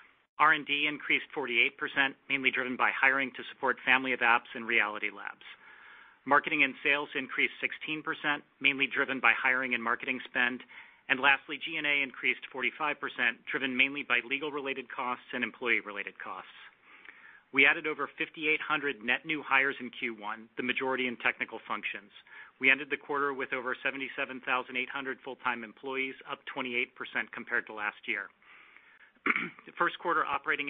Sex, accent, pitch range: male, American, 125-145 Hz